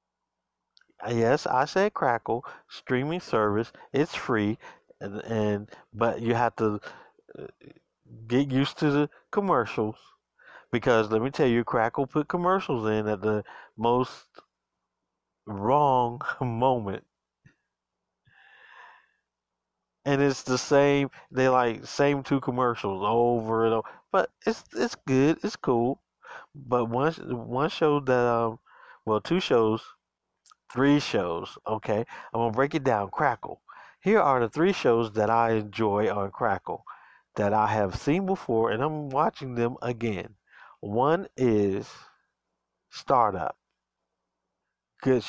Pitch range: 110-140 Hz